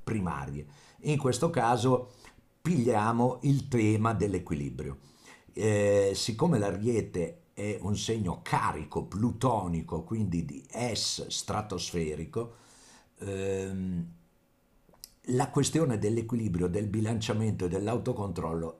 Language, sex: Italian, male